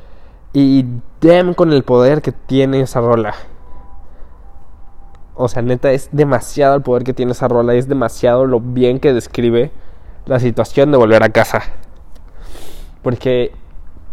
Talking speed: 140 wpm